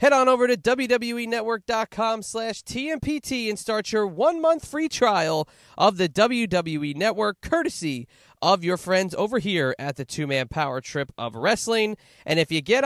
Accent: American